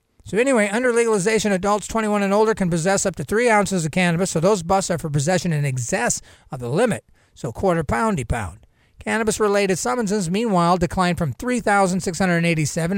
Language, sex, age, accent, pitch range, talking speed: English, male, 40-59, American, 150-195 Hz, 175 wpm